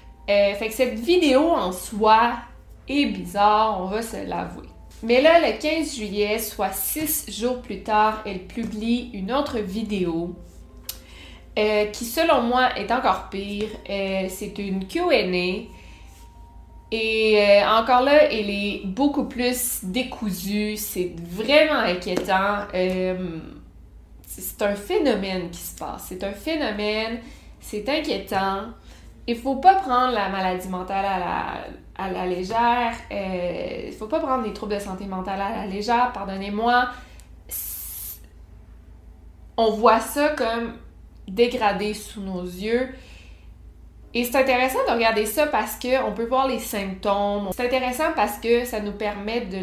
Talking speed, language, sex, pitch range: 145 wpm, French, female, 185-240 Hz